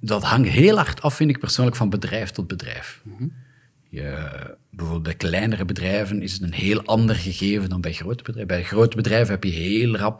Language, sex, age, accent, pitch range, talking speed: Dutch, male, 40-59, Dutch, 90-115 Hz, 195 wpm